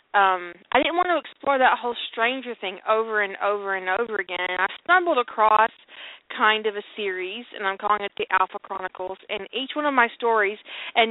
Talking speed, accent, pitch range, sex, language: 205 wpm, American, 200-280 Hz, female, English